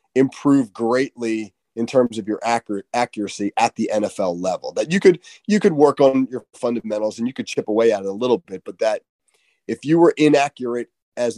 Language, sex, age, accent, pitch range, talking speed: English, male, 30-49, American, 110-135 Hz, 200 wpm